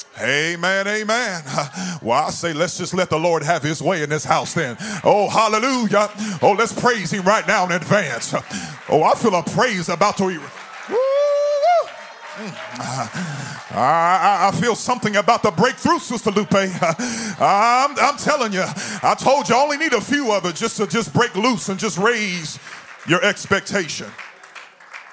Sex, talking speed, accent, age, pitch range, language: male, 165 wpm, American, 40-59, 150-205 Hz, English